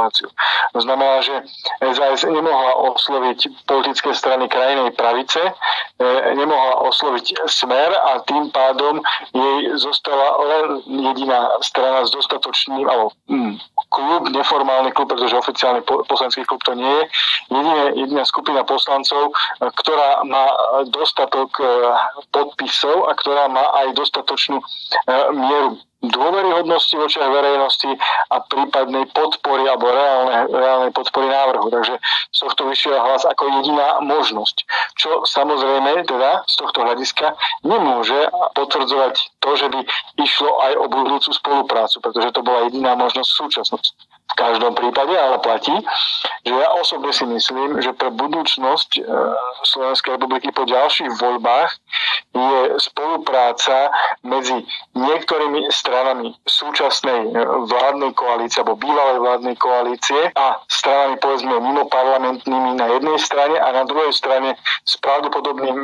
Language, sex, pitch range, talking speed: Slovak, male, 130-140 Hz, 125 wpm